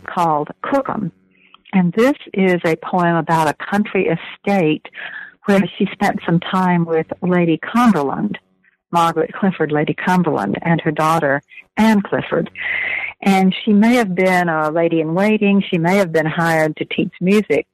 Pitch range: 160-195 Hz